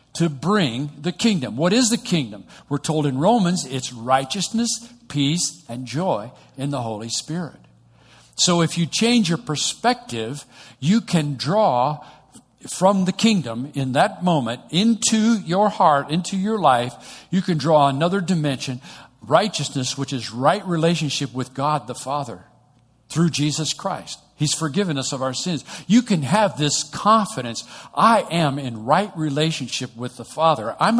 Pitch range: 130-180 Hz